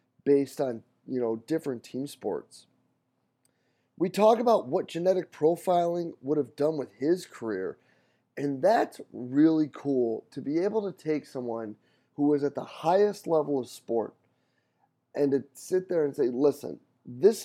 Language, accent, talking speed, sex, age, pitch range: English, American, 155 wpm, male, 30-49, 125-155 Hz